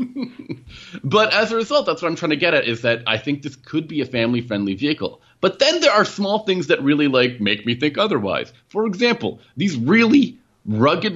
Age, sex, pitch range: 30-49, male, 105-155 Hz